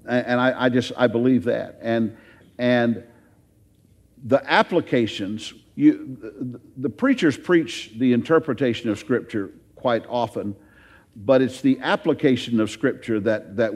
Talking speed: 130 wpm